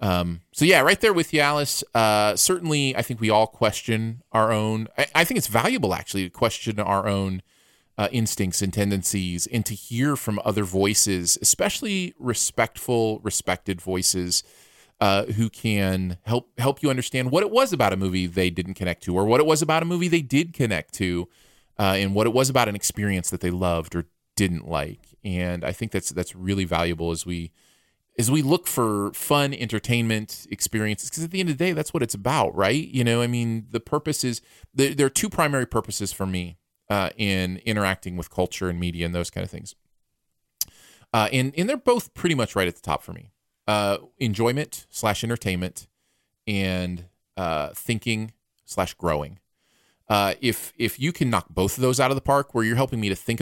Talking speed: 200 wpm